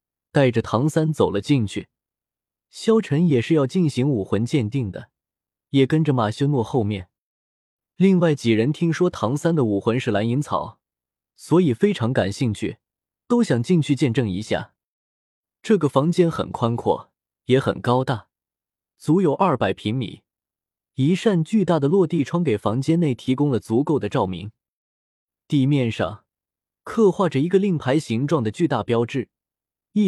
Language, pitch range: Chinese, 110-165 Hz